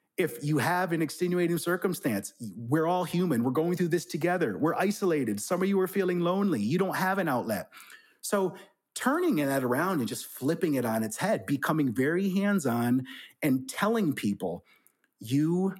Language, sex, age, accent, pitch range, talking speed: English, male, 30-49, American, 140-195 Hz, 170 wpm